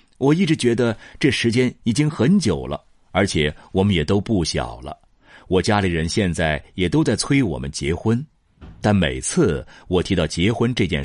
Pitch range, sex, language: 80-105 Hz, male, Chinese